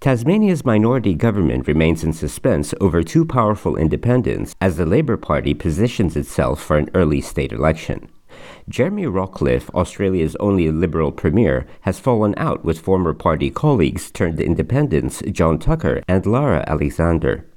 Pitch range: 75-105 Hz